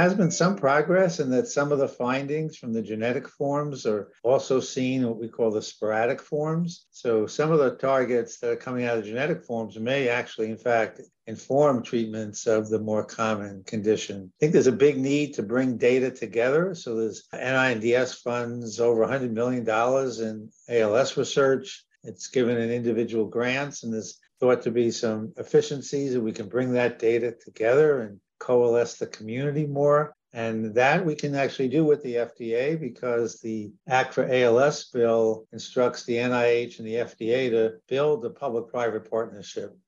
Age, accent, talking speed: 60-79, American, 180 wpm